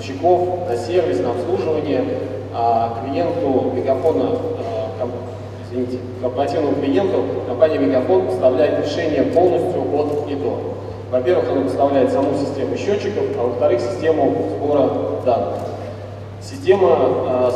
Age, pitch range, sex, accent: 20-39, 115-150 Hz, male, native